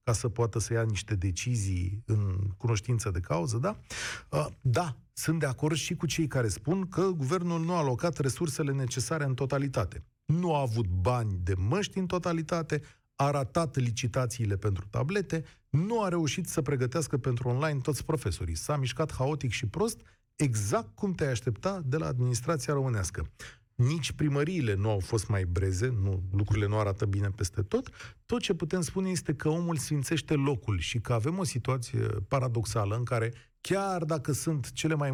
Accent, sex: native, male